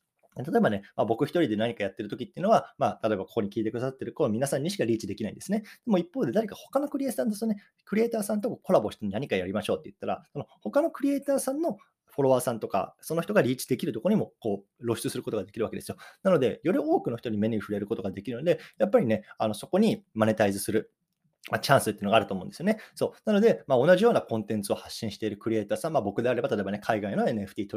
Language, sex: Japanese, male